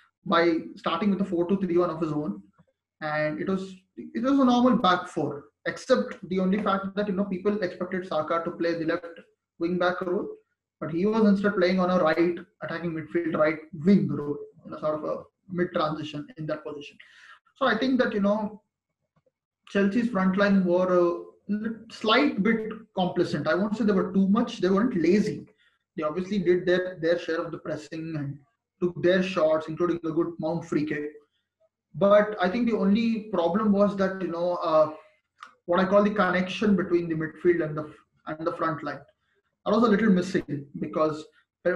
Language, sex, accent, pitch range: English, male, Indian, 165-205 Hz